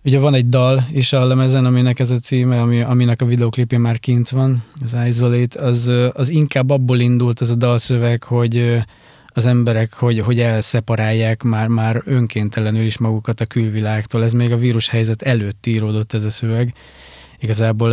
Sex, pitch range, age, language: male, 110-120 Hz, 20-39, Hungarian